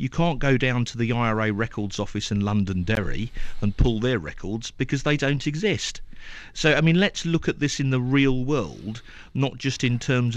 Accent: British